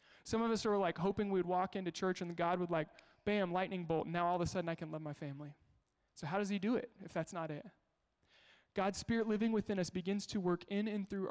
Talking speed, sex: 260 wpm, male